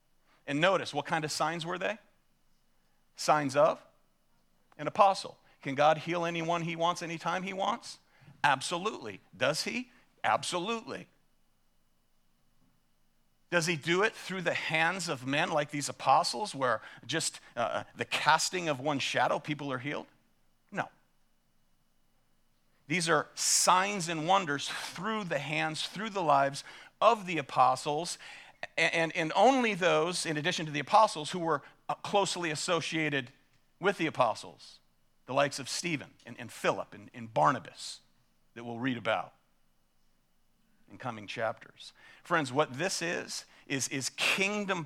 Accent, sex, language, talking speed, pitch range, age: American, male, English, 140 wpm, 115-170 Hz, 50-69